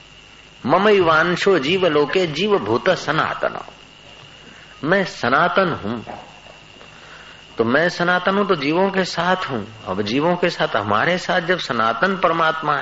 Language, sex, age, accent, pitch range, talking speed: Hindi, male, 50-69, native, 120-180 Hz, 130 wpm